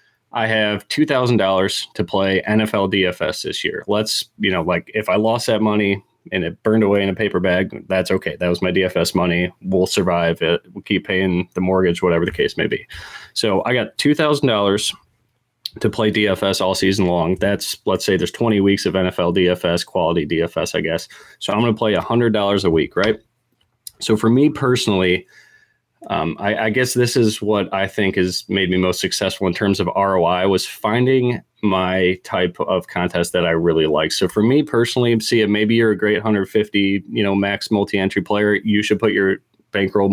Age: 20-39